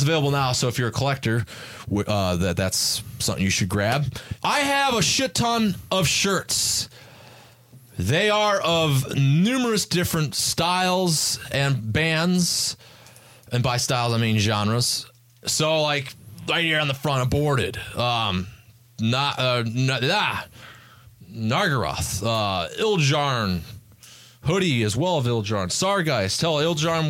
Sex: male